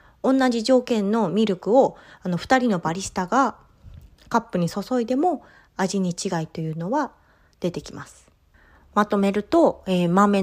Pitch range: 170-255 Hz